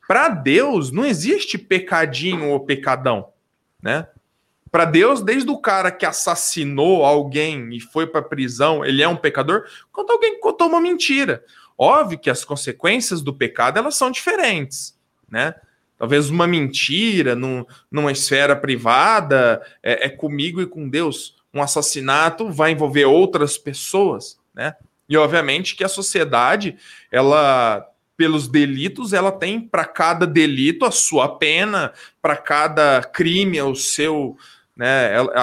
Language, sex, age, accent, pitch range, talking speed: Portuguese, male, 20-39, Brazilian, 140-185 Hz, 135 wpm